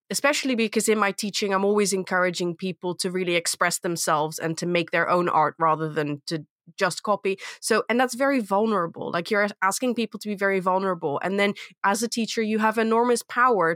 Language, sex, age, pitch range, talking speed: English, female, 20-39, 170-215 Hz, 200 wpm